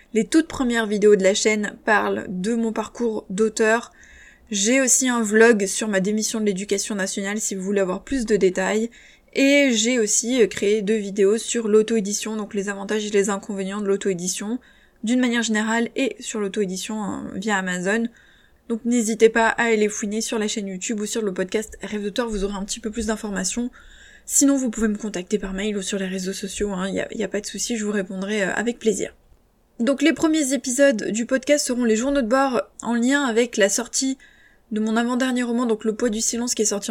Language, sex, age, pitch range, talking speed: French, female, 20-39, 205-240 Hz, 215 wpm